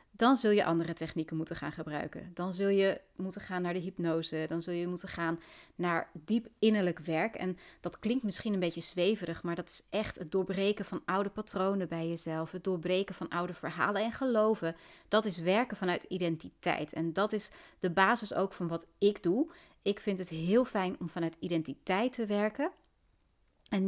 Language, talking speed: Dutch, 190 wpm